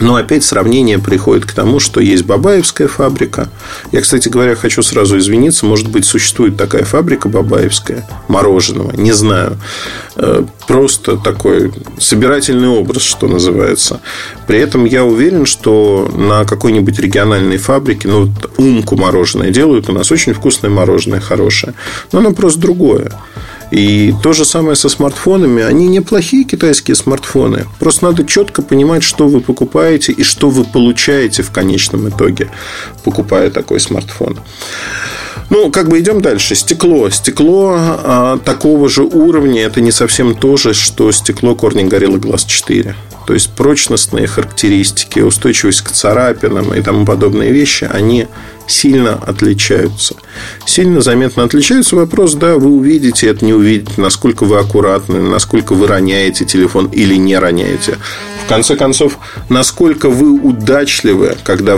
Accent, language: native, Russian